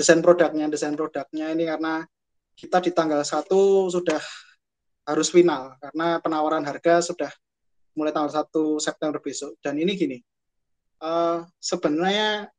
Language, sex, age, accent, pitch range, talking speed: Indonesian, male, 20-39, native, 145-170 Hz, 125 wpm